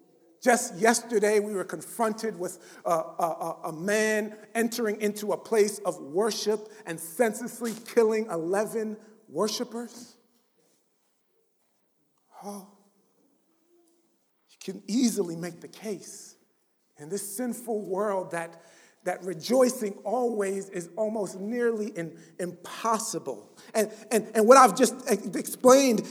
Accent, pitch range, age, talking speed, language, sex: American, 200-245 Hz, 50-69, 110 wpm, English, male